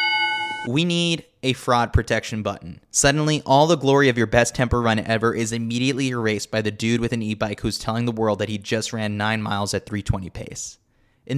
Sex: male